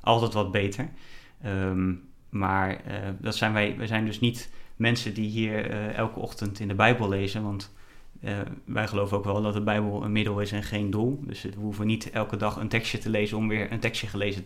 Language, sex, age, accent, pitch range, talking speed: Dutch, male, 30-49, Dutch, 100-115 Hz, 210 wpm